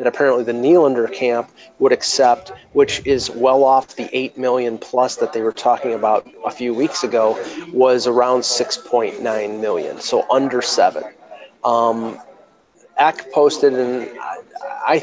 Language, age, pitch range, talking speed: English, 30-49, 120-135 Hz, 145 wpm